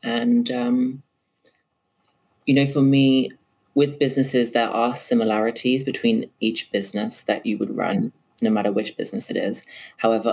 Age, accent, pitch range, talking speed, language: 20-39, British, 105-130 Hz, 145 wpm, English